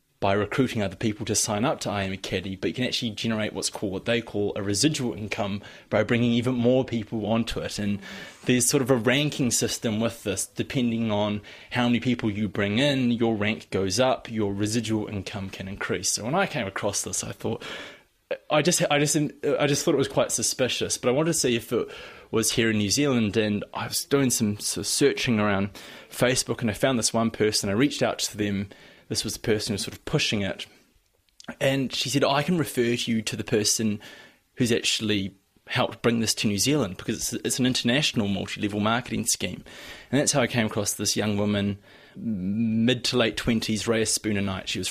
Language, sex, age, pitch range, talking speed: English, male, 20-39, 105-125 Hz, 210 wpm